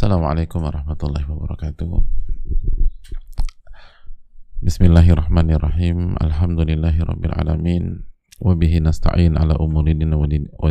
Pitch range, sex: 80-90 Hz, male